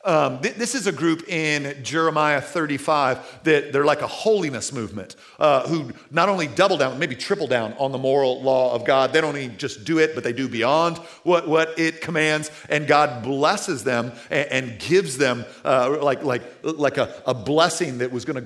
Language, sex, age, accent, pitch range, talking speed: English, male, 40-59, American, 145-210 Hz, 205 wpm